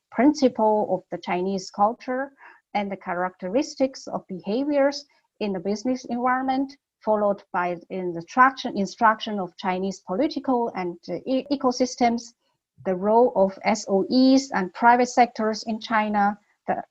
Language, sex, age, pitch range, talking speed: English, female, 50-69, 200-255 Hz, 130 wpm